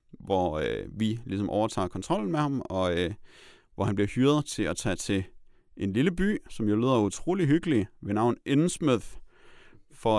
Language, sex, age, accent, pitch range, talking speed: Danish, male, 30-49, native, 95-120 Hz, 165 wpm